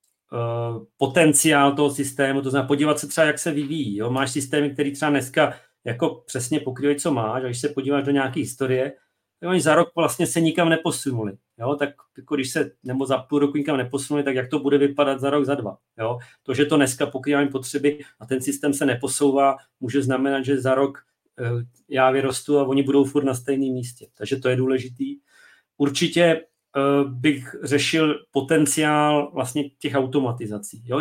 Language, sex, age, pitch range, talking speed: Czech, male, 40-59, 135-150 Hz, 180 wpm